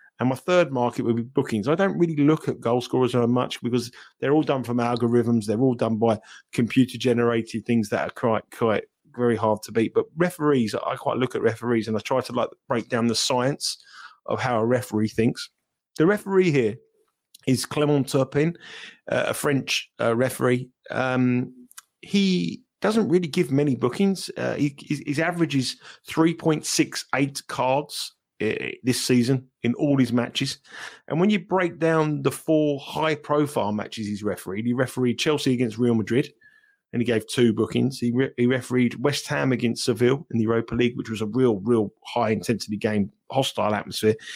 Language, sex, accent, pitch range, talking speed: English, male, British, 115-145 Hz, 180 wpm